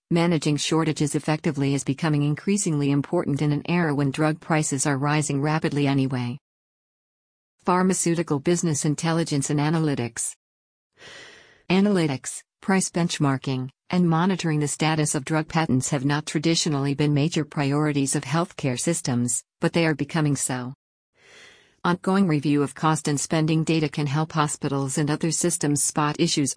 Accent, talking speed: American, 140 wpm